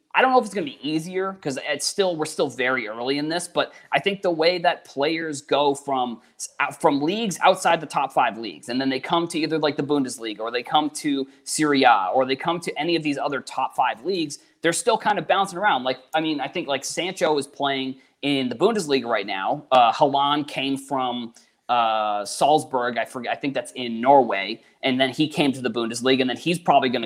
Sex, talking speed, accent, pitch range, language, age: male, 230 wpm, American, 130-170 Hz, English, 20-39